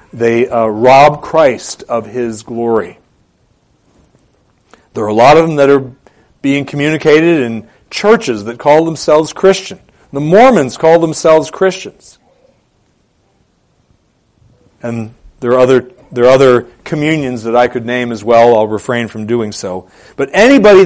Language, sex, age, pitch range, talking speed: English, male, 40-59, 120-180 Hz, 140 wpm